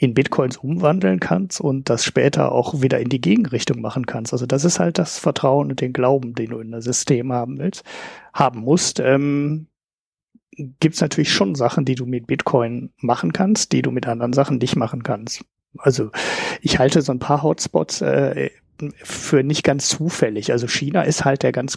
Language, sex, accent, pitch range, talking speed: German, male, German, 120-145 Hz, 195 wpm